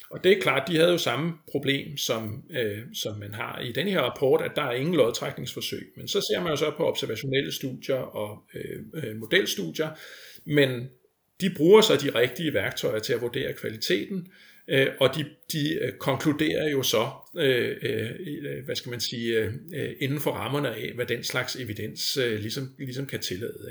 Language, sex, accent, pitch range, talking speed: Danish, male, native, 125-155 Hz, 185 wpm